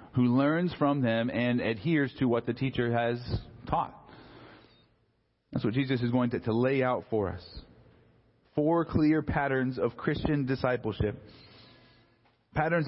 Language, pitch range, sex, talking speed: English, 120-150 Hz, male, 140 wpm